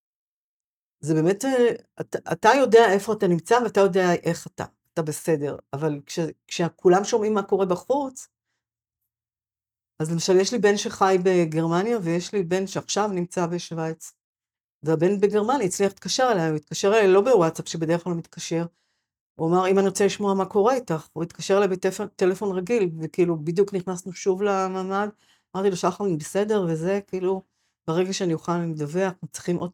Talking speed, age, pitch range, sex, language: 160 wpm, 60-79, 160-200 Hz, female, Hebrew